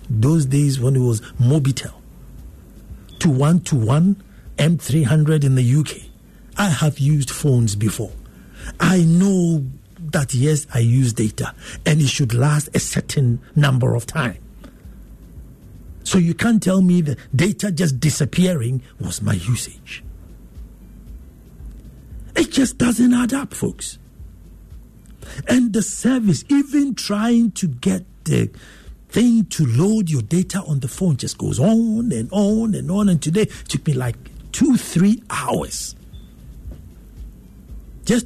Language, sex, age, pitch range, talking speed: English, male, 60-79, 130-195 Hz, 130 wpm